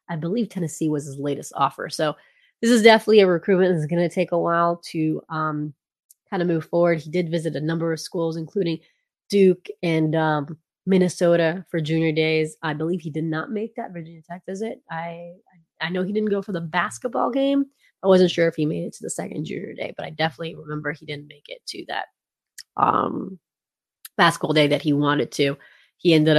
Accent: American